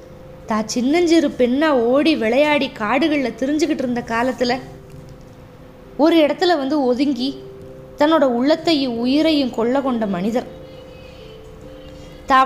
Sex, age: female, 20-39